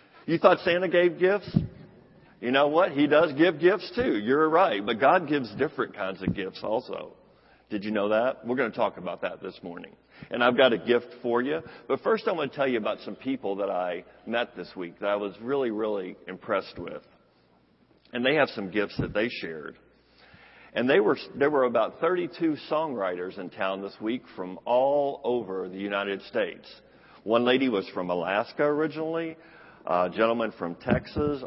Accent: American